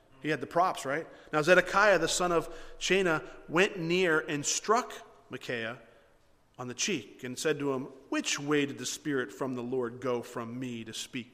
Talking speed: 190 wpm